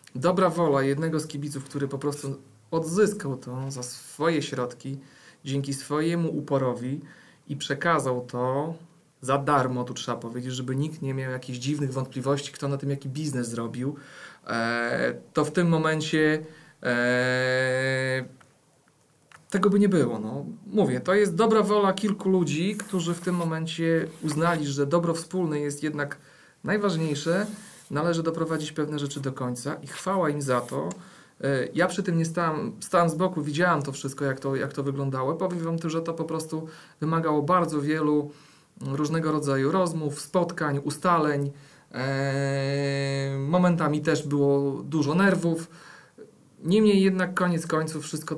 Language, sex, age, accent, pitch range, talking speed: Polish, male, 40-59, native, 135-165 Hz, 150 wpm